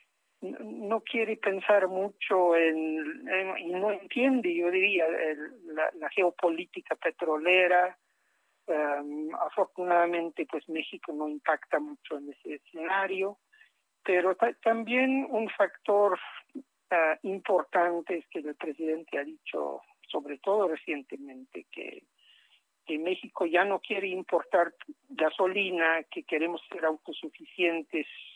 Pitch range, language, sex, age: 155-200 Hz, Spanish, male, 60-79